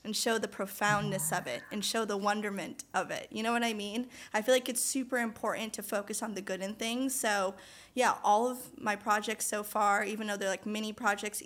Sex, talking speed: female, 230 wpm